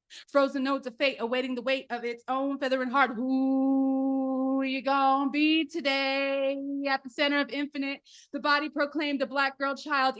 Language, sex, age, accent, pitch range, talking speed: English, female, 20-39, American, 250-280 Hz, 175 wpm